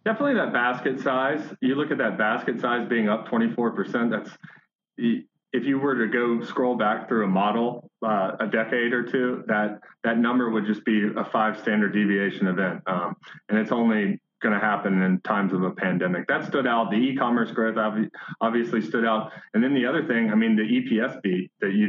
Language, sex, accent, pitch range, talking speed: English, male, American, 105-125 Hz, 200 wpm